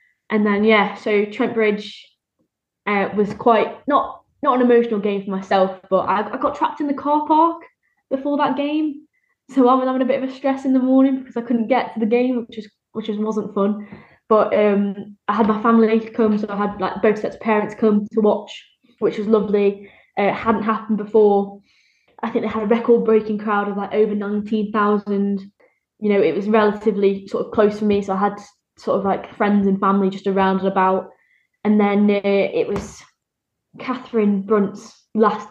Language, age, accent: English, 10-29, British